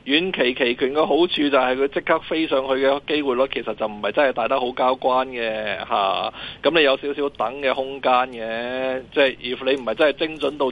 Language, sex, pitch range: Chinese, male, 120-145 Hz